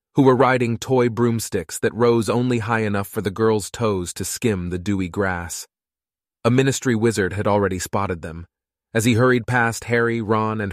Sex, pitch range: male, 95-115 Hz